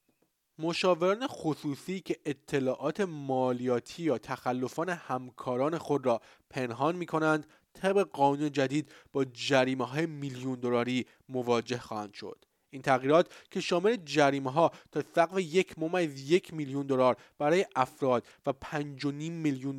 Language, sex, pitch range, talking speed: Persian, male, 135-170 Hz, 125 wpm